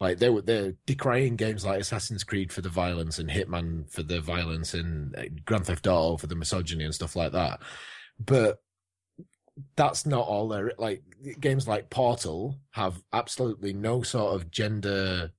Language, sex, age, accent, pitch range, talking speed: English, male, 20-39, British, 90-120 Hz, 170 wpm